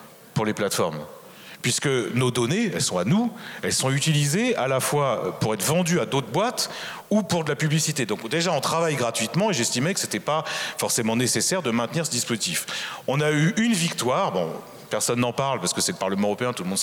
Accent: French